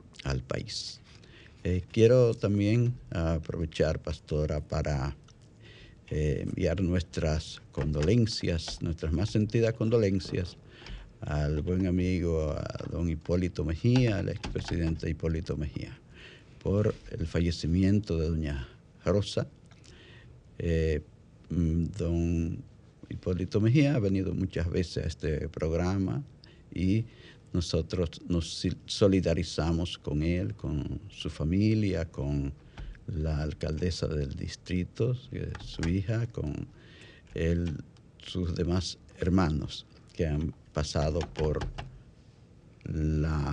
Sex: male